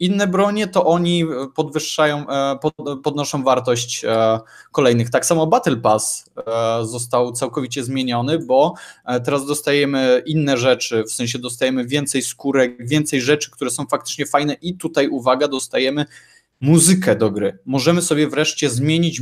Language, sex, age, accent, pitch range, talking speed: Polish, male, 20-39, native, 125-155 Hz, 130 wpm